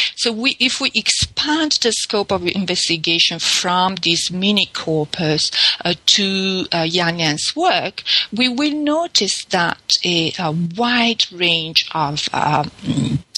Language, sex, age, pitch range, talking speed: English, female, 50-69, 155-190 Hz, 130 wpm